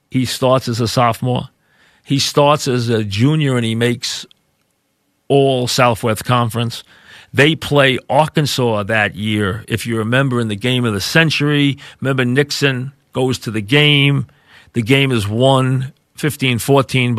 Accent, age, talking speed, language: American, 40-59, 145 wpm, English